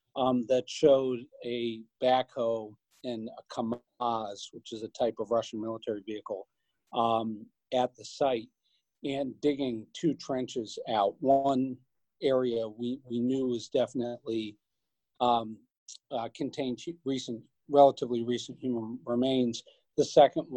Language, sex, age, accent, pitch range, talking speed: English, male, 40-59, American, 115-130 Hz, 125 wpm